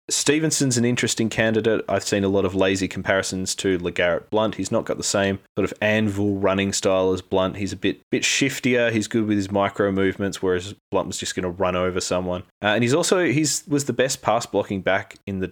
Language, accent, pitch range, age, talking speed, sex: English, Australian, 95-110 Hz, 20-39, 230 wpm, male